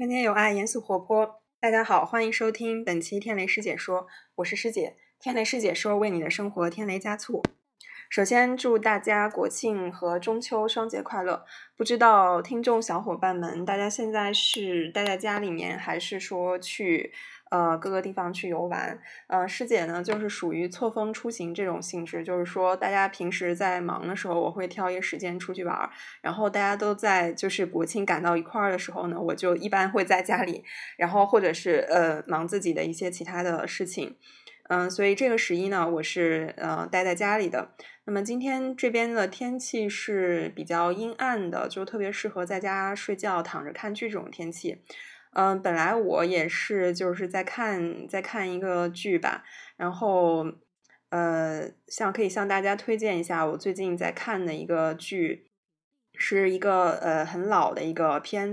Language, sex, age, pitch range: Chinese, female, 20-39, 175-215 Hz